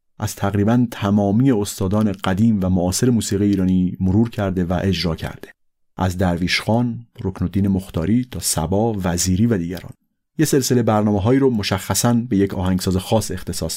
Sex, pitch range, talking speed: male, 90-115 Hz, 145 wpm